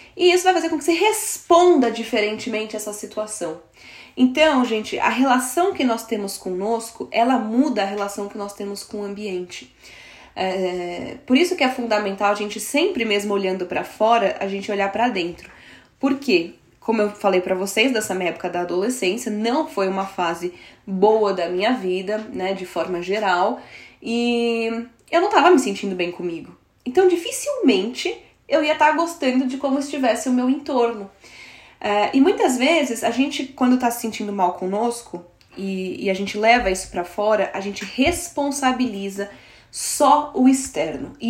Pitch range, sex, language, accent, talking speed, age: 195-265 Hz, female, Portuguese, Brazilian, 175 wpm, 10-29